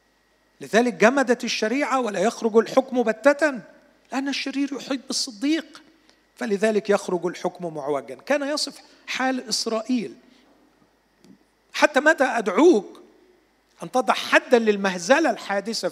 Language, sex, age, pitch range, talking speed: Arabic, male, 40-59, 165-255 Hz, 100 wpm